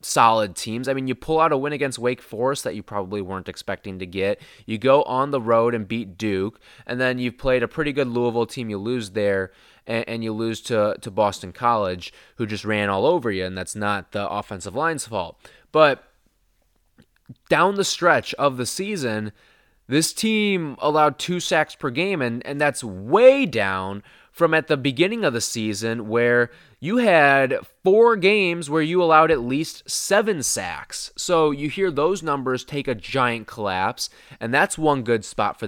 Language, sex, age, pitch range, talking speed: English, male, 20-39, 110-150 Hz, 185 wpm